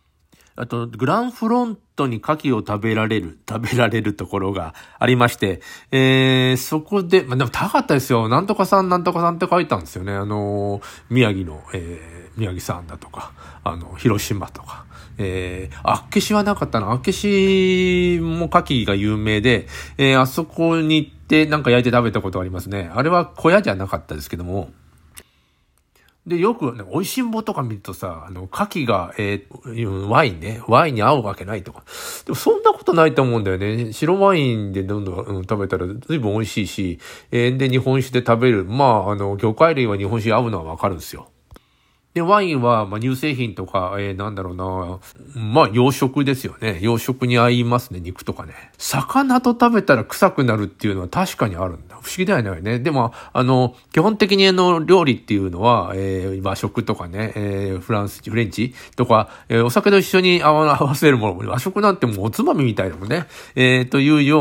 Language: Japanese